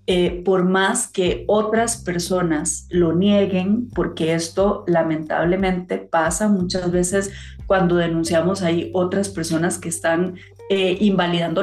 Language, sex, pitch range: Portuguese, female, 165-200 Hz